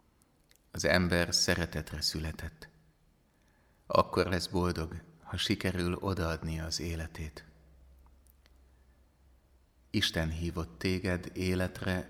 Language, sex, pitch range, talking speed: Hungarian, male, 80-90 Hz, 80 wpm